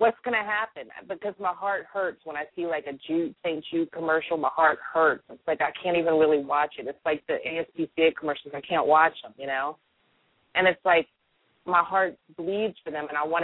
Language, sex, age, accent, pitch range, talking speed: English, female, 30-49, American, 150-185 Hz, 220 wpm